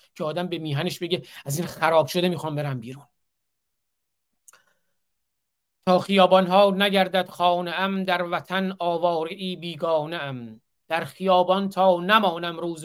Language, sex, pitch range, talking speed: Persian, male, 170-205 Hz, 120 wpm